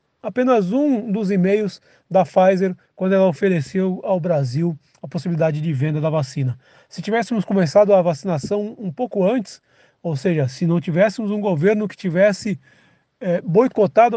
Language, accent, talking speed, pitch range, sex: Portuguese, Brazilian, 150 wpm, 175-220 Hz, male